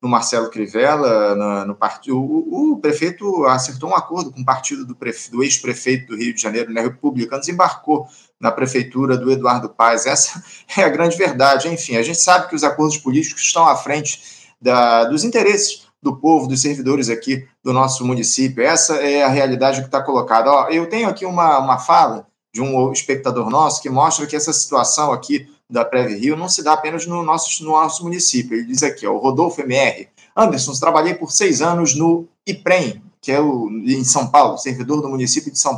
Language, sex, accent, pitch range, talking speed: Portuguese, male, Brazilian, 130-170 Hz, 190 wpm